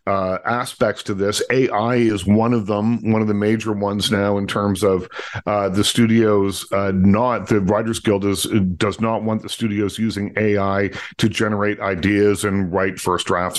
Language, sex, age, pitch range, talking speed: English, male, 50-69, 100-120 Hz, 175 wpm